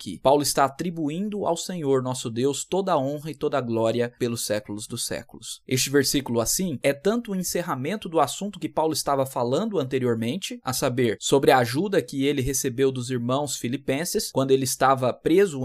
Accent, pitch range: Brazilian, 130-170 Hz